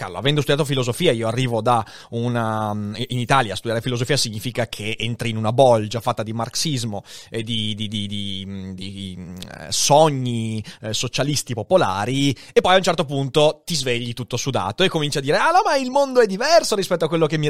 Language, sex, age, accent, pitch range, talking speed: Italian, male, 30-49, native, 125-170 Hz, 200 wpm